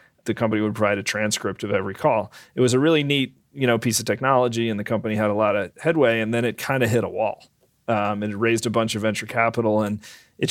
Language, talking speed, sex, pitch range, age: English, 265 wpm, male, 105-120 Hz, 30-49